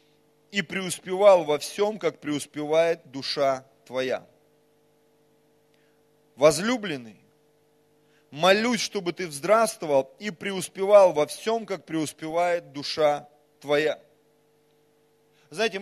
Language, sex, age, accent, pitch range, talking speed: Russian, male, 30-49, native, 150-205 Hz, 85 wpm